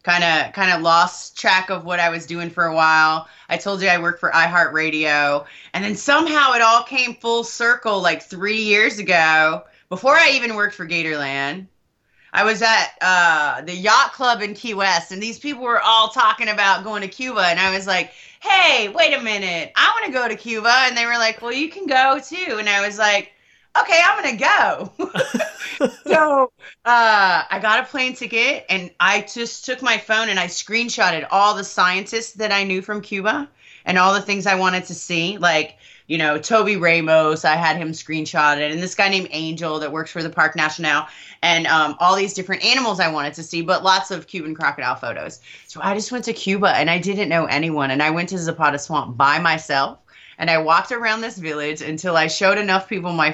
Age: 30-49